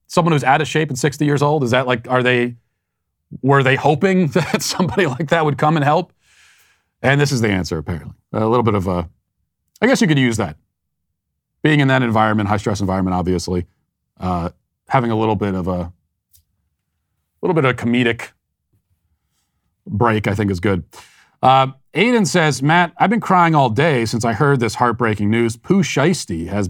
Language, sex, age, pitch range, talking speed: English, male, 40-59, 95-125 Hz, 190 wpm